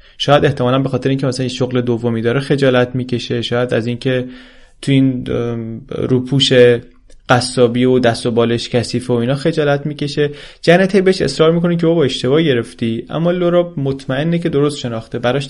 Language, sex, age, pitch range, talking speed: Persian, male, 30-49, 120-145 Hz, 165 wpm